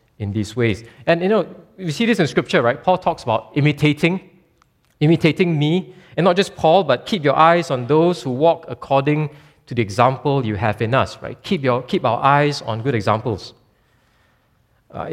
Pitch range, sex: 110-145 Hz, male